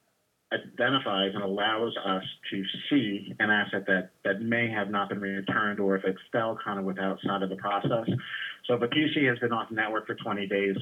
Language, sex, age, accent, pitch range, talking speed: English, male, 30-49, American, 95-105 Hz, 210 wpm